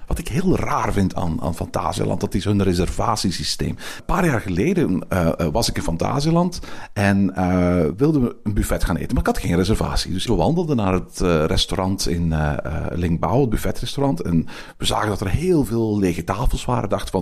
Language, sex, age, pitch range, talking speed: Dutch, male, 50-69, 90-135 Hz, 200 wpm